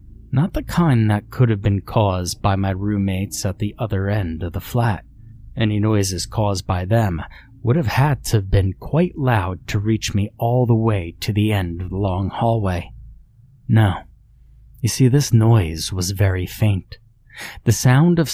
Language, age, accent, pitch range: English, 30-49, American, 95-120 Hz